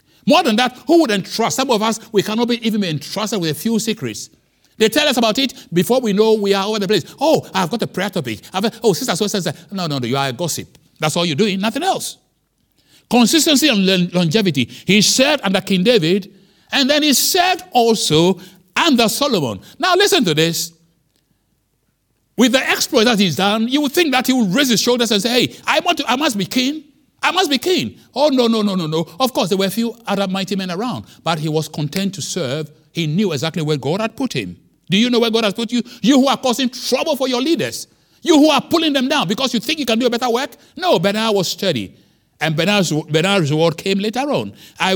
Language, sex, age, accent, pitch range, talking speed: English, male, 60-79, Nigerian, 180-245 Hz, 240 wpm